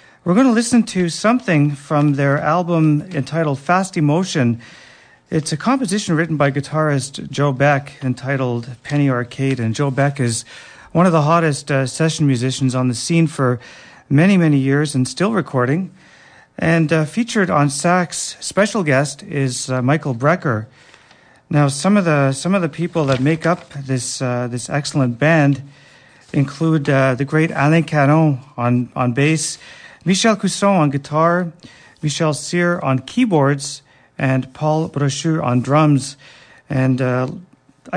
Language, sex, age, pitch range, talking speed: English, male, 40-59, 135-165 Hz, 150 wpm